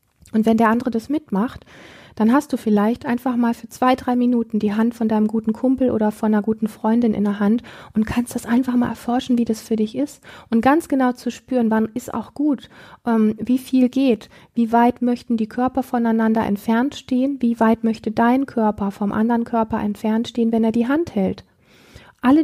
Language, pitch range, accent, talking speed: German, 210-245 Hz, German, 205 wpm